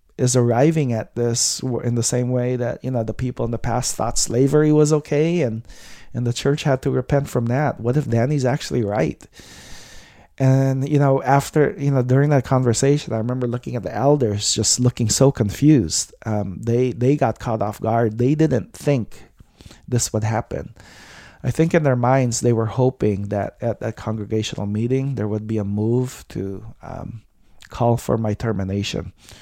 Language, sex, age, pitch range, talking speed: English, male, 20-39, 105-125 Hz, 185 wpm